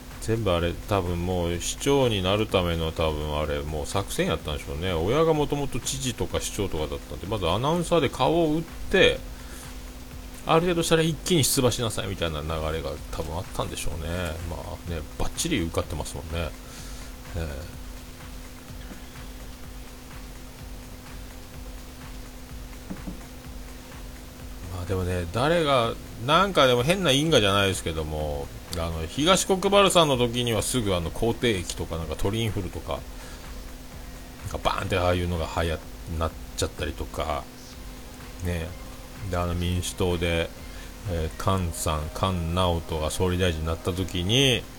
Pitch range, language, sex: 75-100 Hz, Japanese, male